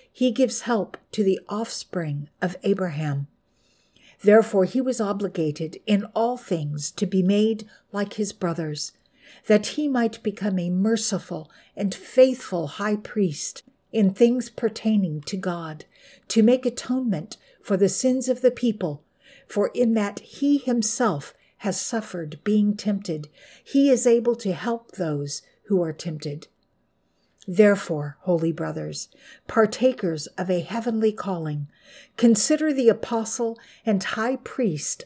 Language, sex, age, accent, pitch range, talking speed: English, female, 60-79, American, 175-235 Hz, 130 wpm